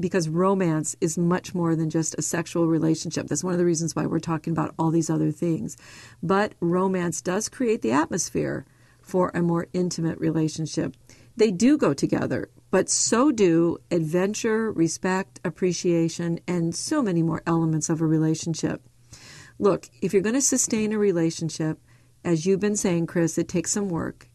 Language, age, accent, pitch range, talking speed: English, 50-69, American, 165-210 Hz, 170 wpm